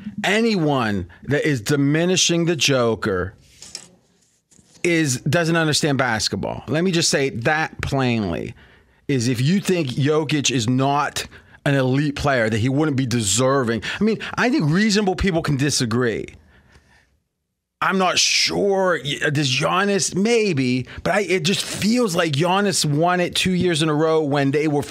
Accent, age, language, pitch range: American, 30-49, English, 140-180 Hz